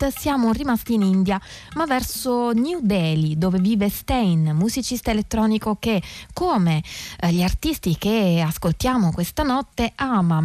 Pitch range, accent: 180-240 Hz, native